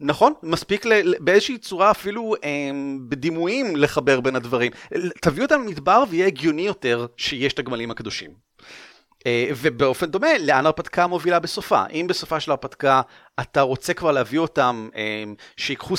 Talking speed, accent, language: 130 wpm, native, Hebrew